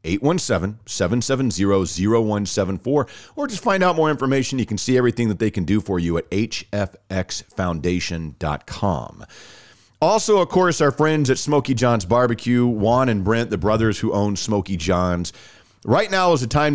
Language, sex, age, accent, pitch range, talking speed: English, male, 40-59, American, 100-135 Hz, 150 wpm